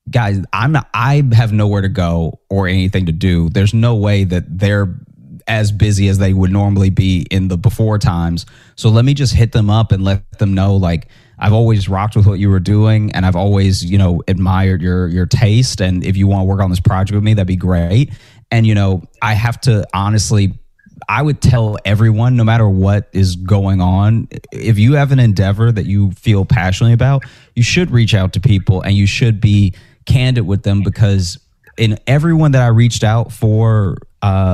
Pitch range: 100-120 Hz